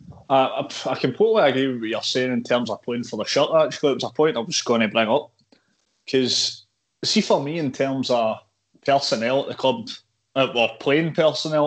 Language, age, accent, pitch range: English, 20-39, British, 115-145 Hz